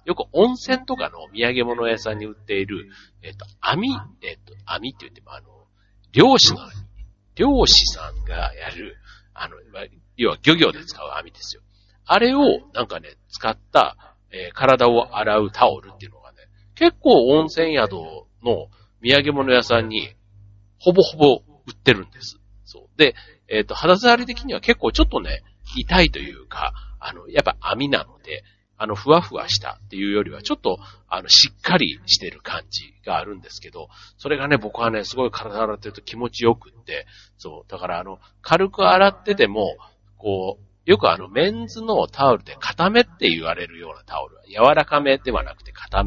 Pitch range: 100-140 Hz